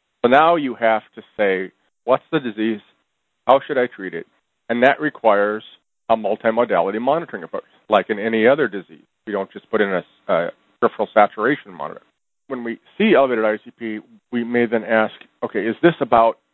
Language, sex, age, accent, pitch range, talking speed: English, male, 40-59, American, 105-130 Hz, 180 wpm